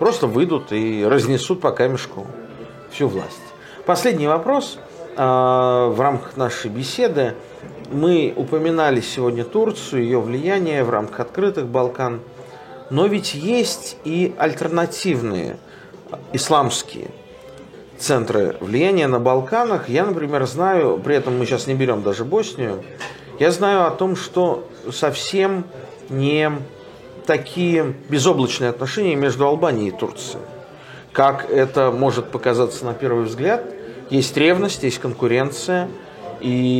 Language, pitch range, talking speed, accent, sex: Russian, 125-165 Hz, 115 wpm, native, male